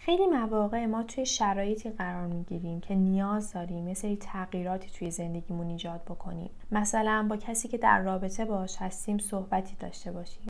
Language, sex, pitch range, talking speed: Persian, female, 190-235 Hz, 155 wpm